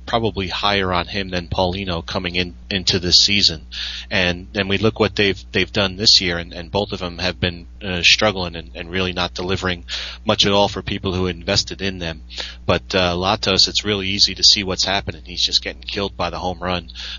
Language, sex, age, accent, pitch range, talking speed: English, male, 30-49, American, 85-95 Hz, 215 wpm